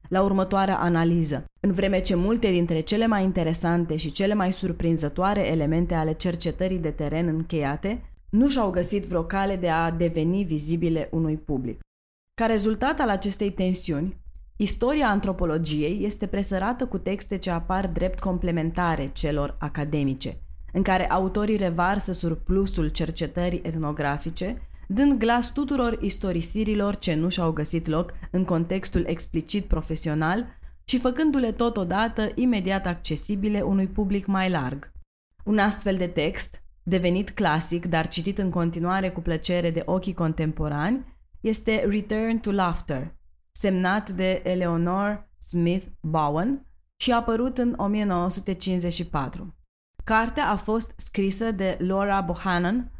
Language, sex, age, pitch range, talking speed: Romanian, female, 20-39, 165-205 Hz, 130 wpm